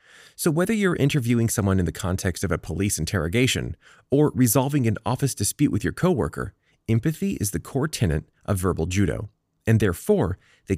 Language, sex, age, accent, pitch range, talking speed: English, male, 30-49, American, 90-135 Hz, 175 wpm